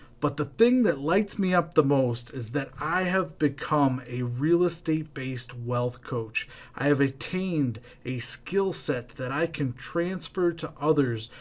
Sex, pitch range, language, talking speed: male, 125-160 Hz, English, 170 wpm